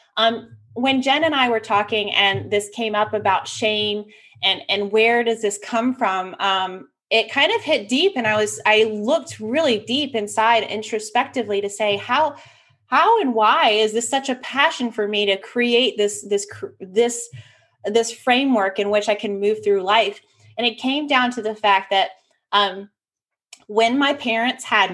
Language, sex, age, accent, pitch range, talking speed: English, female, 20-39, American, 200-240 Hz, 180 wpm